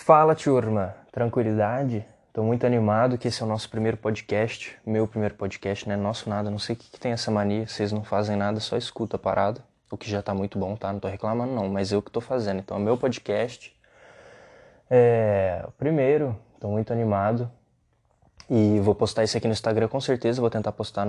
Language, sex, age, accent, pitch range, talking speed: Portuguese, male, 20-39, Brazilian, 100-120 Hz, 210 wpm